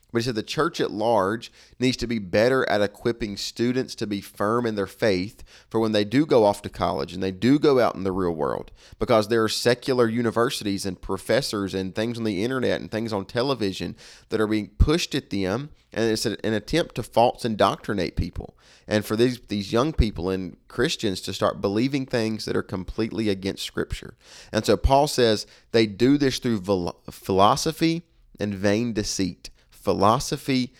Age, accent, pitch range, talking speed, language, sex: 30-49, American, 100-120 Hz, 190 wpm, English, male